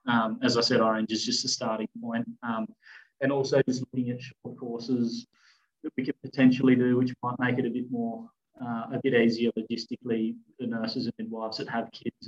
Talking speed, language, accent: 205 wpm, English, Australian